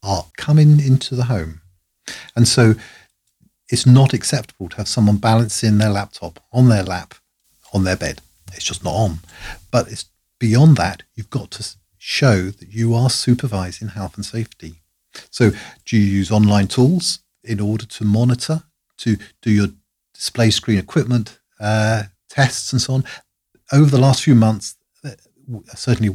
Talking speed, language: 155 wpm, English